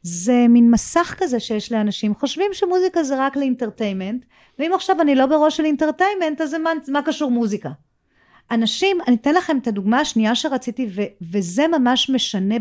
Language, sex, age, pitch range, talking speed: Hebrew, female, 40-59, 205-275 Hz, 165 wpm